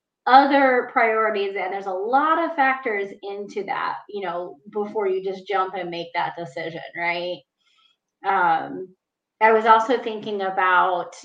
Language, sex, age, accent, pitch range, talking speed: English, female, 20-39, American, 180-240 Hz, 145 wpm